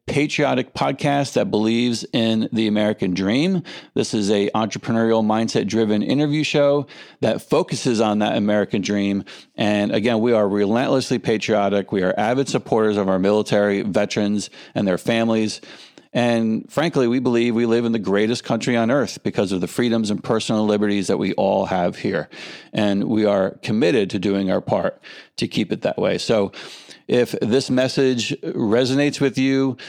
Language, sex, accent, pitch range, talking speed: English, male, American, 105-125 Hz, 165 wpm